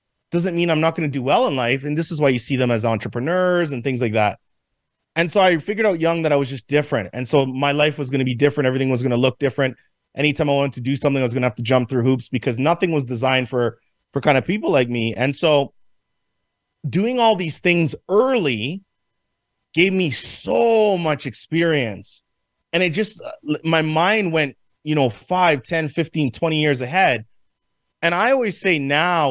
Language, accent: English, American